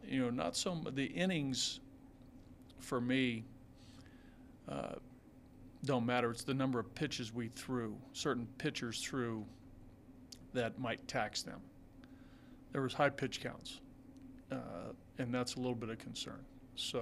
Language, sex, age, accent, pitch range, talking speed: English, male, 40-59, American, 115-130 Hz, 140 wpm